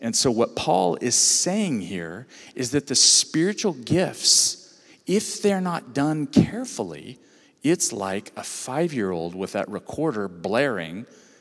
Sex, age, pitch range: male, 40-59, 120-180 Hz